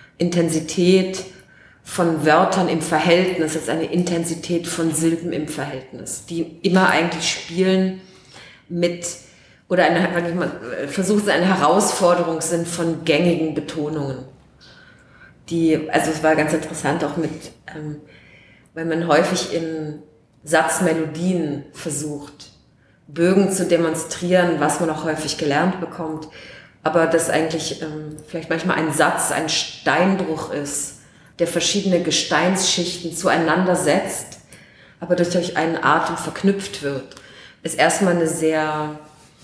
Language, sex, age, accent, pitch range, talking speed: German, female, 30-49, German, 150-175 Hz, 120 wpm